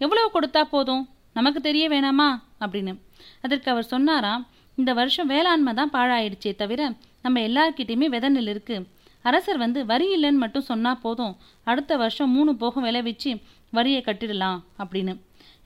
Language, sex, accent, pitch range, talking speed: Tamil, female, native, 215-285 Hz, 125 wpm